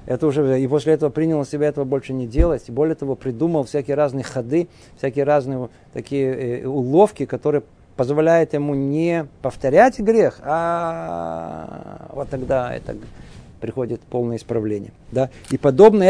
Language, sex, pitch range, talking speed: Russian, male, 135-180 Hz, 140 wpm